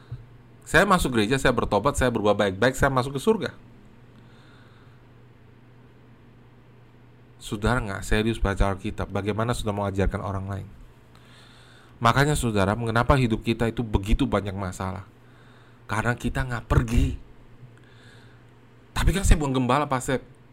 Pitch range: 110-135 Hz